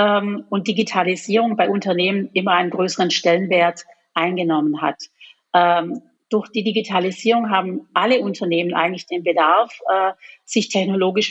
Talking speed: 110 wpm